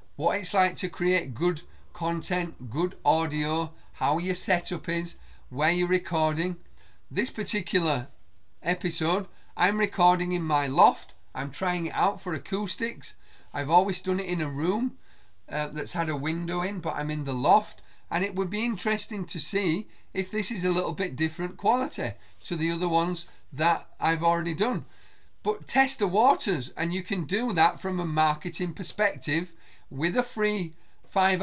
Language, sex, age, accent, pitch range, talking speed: English, male, 40-59, British, 160-190 Hz, 170 wpm